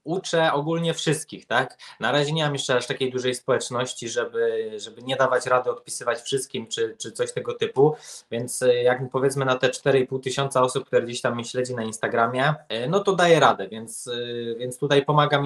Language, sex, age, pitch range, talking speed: Polish, male, 20-39, 125-145 Hz, 185 wpm